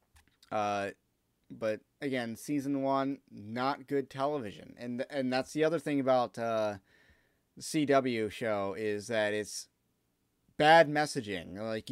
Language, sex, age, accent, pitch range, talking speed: English, male, 30-49, American, 120-150 Hz, 125 wpm